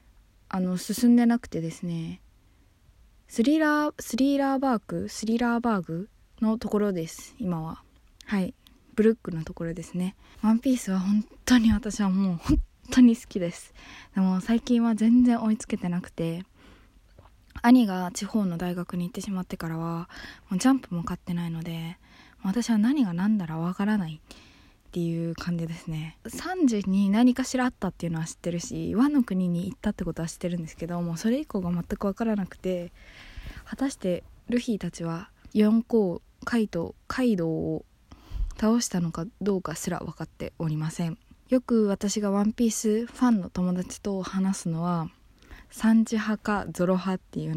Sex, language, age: female, Japanese, 20-39